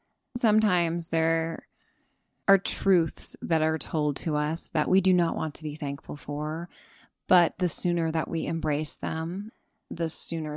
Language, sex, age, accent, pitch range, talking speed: English, female, 20-39, American, 155-195 Hz, 155 wpm